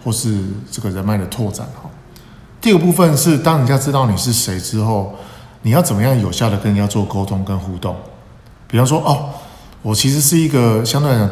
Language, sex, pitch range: Chinese, male, 105-130 Hz